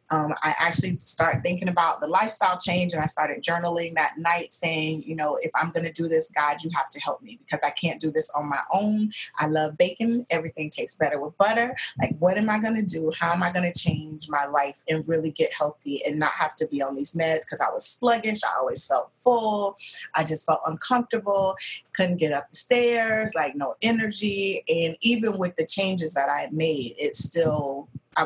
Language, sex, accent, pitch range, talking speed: English, female, American, 160-220 Hz, 225 wpm